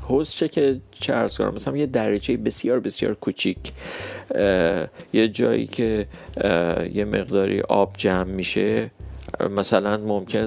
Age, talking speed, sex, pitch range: 40-59, 120 wpm, male, 95-110 Hz